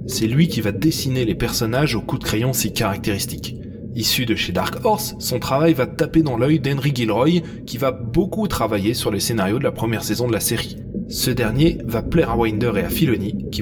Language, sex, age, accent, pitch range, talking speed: French, male, 20-39, French, 115-165 Hz, 220 wpm